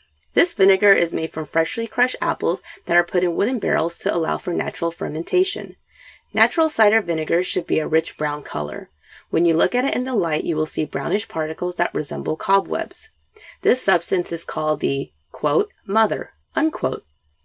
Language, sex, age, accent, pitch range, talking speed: English, female, 30-49, American, 155-220 Hz, 180 wpm